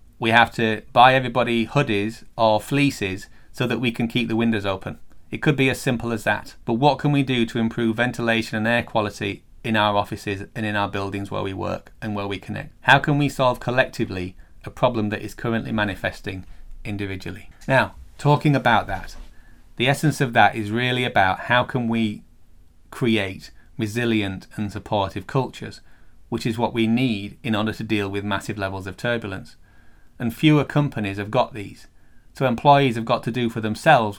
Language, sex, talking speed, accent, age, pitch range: English, male, 190 wpm, British, 30-49, 105-120 Hz